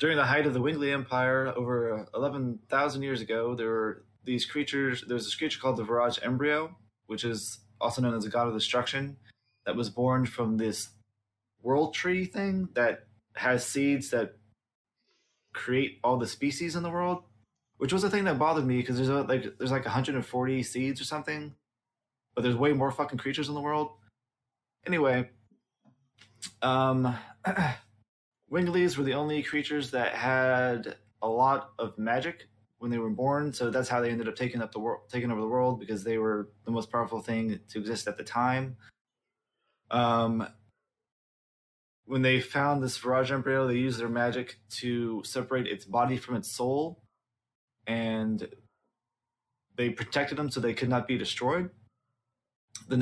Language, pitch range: English, 115-135 Hz